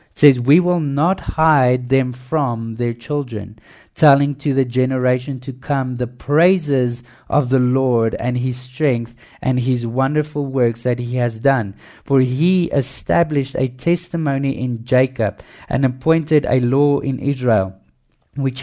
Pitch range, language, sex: 125-150 Hz, English, male